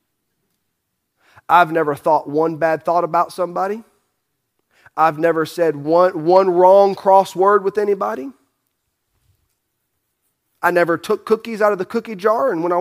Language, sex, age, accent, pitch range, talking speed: English, male, 30-49, American, 135-175 Hz, 135 wpm